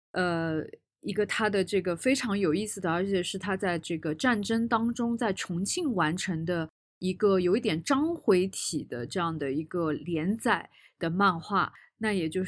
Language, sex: Chinese, female